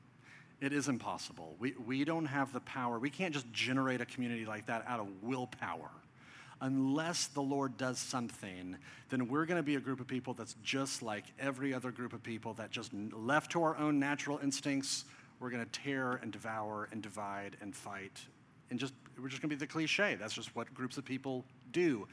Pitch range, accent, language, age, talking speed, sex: 125-150 Hz, American, English, 40-59, 205 wpm, male